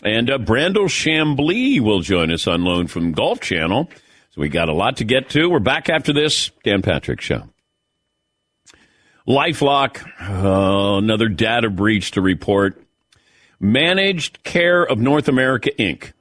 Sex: male